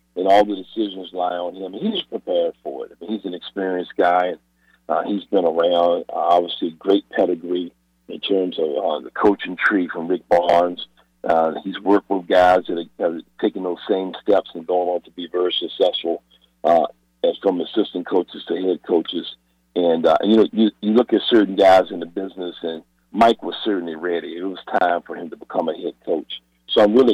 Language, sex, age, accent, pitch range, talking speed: English, male, 50-69, American, 85-110 Hz, 200 wpm